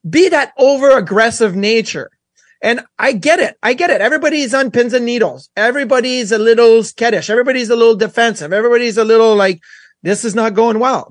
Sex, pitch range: male, 210-270 Hz